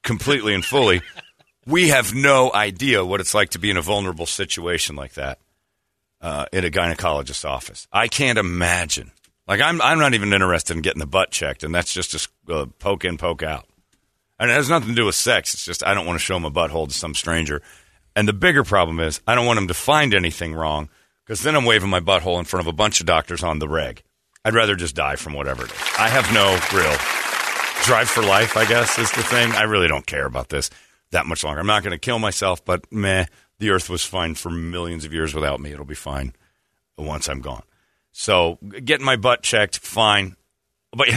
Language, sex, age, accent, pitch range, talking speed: English, male, 40-59, American, 80-105 Hz, 225 wpm